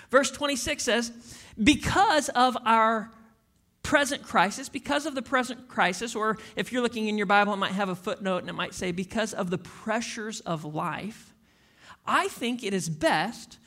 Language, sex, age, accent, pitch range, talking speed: English, male, 40-59, American, 200-265 Hz, 175 wpm